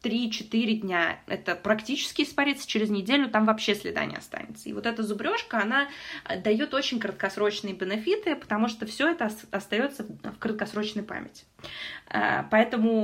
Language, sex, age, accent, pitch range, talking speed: Russian, female, 20-39, native, 205-255 Hz, 145 wpm